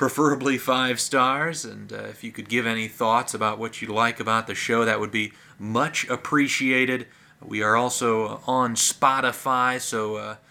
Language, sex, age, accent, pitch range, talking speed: English, male, 30-49, American, 115-145 Hz, 170 wpm